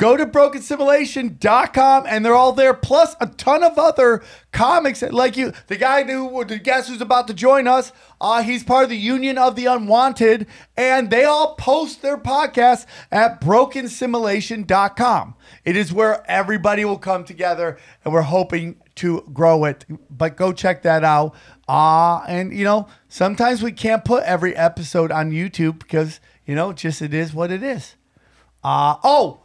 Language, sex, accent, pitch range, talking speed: English, male, American, 180-260 Hz, 175 wpm